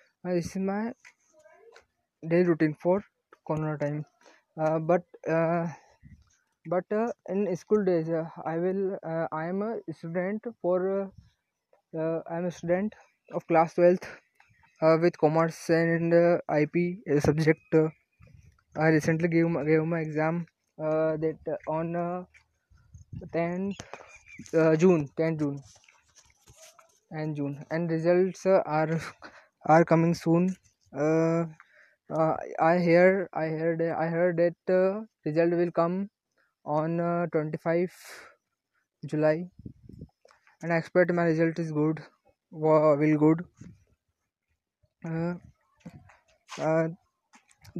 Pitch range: 155-180 Hz